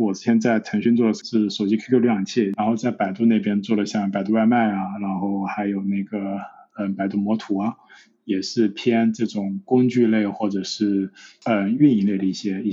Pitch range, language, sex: 105-130 Hz, Chinese, male